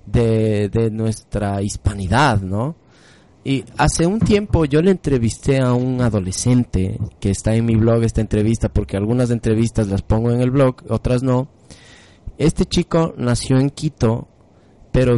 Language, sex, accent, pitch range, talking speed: Spanish, male, Mexican, 110-135 Hz, 150 wpm